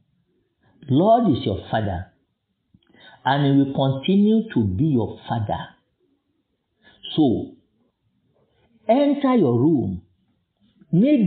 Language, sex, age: English, male, 50-69